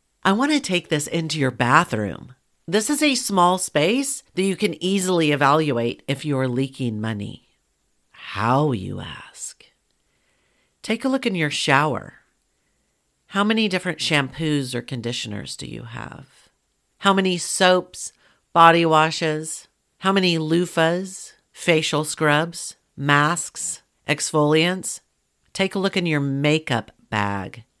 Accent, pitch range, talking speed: American, 135-185 Hz, 125 wpm